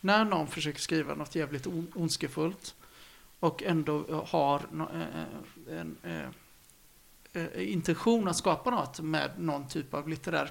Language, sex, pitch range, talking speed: Swedish, male, 155-195 Hz, 115 wpm